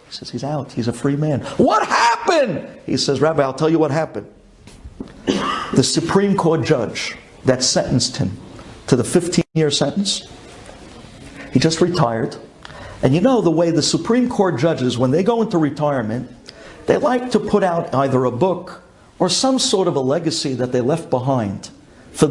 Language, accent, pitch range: English, American, 145-215 Hz